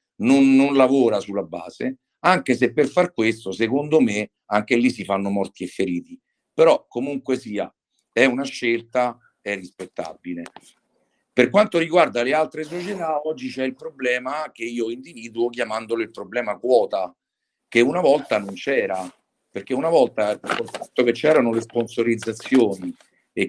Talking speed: 145 wpm